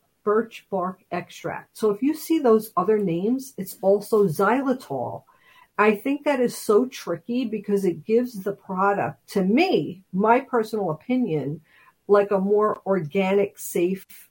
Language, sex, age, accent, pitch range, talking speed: English, female, 50-69, American, 170-230 Hz, 145 wpm